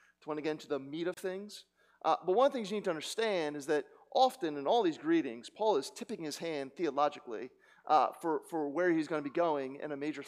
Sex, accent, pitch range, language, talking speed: male, American, 140-205 Hz, English, 255 wpm